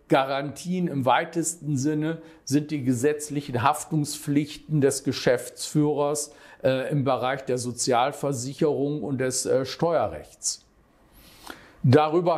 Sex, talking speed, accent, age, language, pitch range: male, 95 wpm, German, 50-69, German, 140-165 Hz